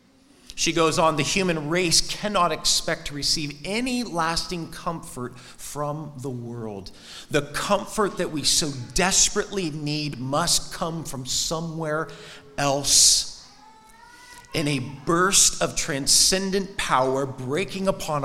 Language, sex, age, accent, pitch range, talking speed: English, male, 40-59, American, 140-185 Hz, 120 wpm